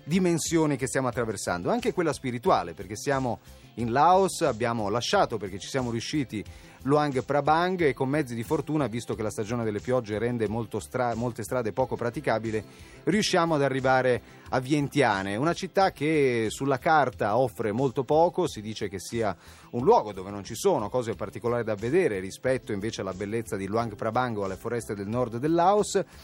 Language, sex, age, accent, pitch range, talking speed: Italian, male, 30-49, native, 110-145 Hz, 180 wpm